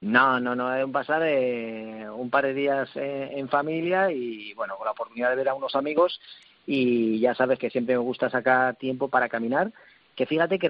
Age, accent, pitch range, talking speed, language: 40-59, Spanish, 130-160 Hz, 215 wpm, Spanish